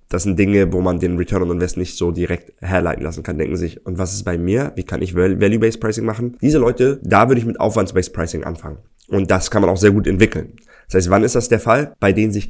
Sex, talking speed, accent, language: male, 265 wpm, German, German